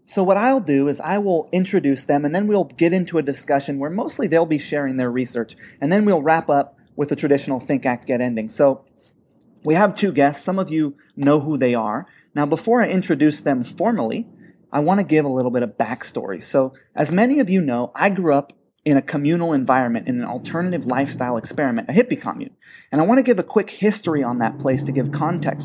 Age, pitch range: 30-49, 135-175 Hz